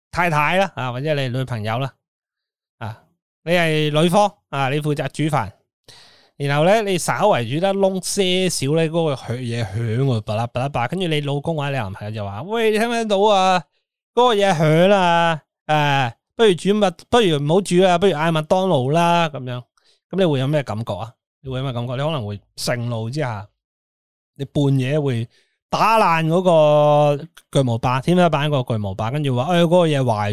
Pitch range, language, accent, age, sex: 120-170 Hz, Chinese, native, 20-39, male